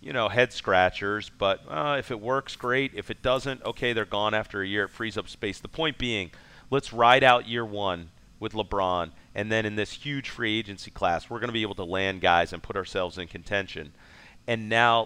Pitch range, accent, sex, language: 100-145 Hz, American, male, English